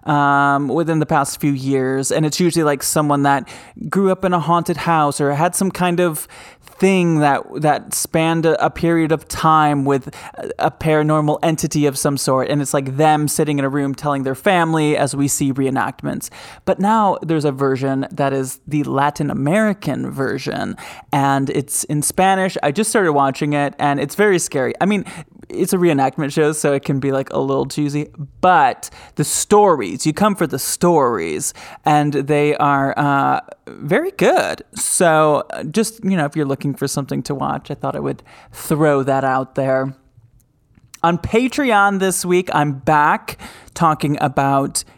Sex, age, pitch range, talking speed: male, 20-39, 140-170 Hz, 175 wpm